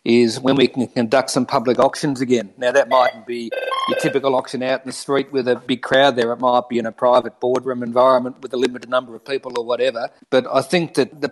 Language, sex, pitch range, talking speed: English, male, 125-145 Hz, 245 wpm